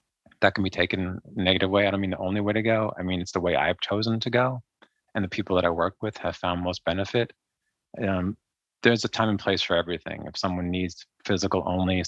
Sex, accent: male, American